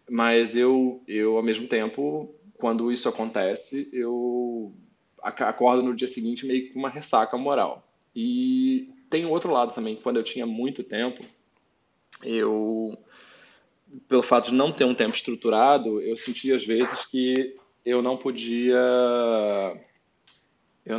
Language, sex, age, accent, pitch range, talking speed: Portuguese, male, 20-39, Brazilian, 115-135 Hz, 135 wpm